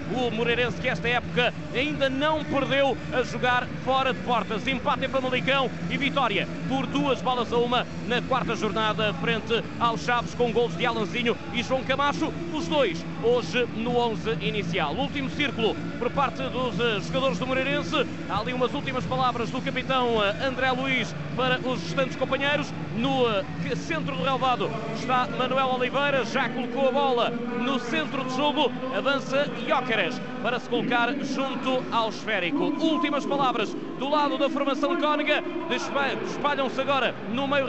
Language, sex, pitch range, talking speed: Portuguese, male, 240-280 Hz, 160 wpm